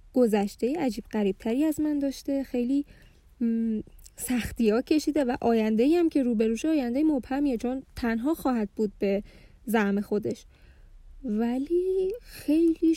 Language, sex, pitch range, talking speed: Persian, female, 240-300 Hz, 135 wpm